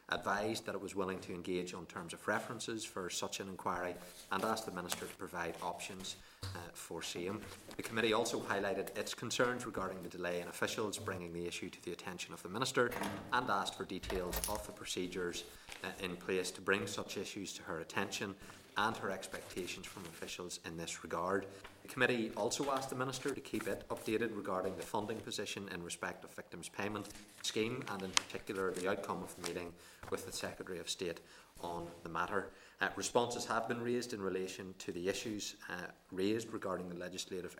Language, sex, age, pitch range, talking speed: English, male, 30-49, 90-105 Hz, 195 wpm